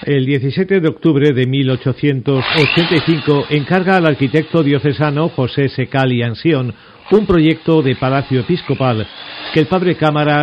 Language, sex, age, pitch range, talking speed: Spanish, male, 50-69, 120-150 Hz, 130 wpm